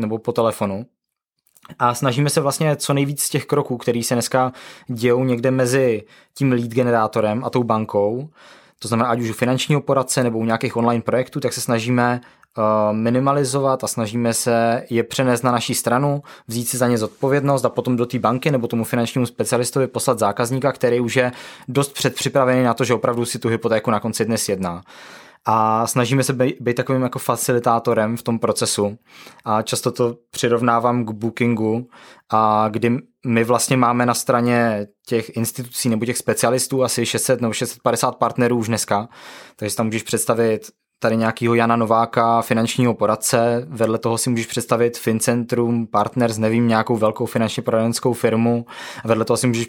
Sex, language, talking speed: male, Czech, 175 wpm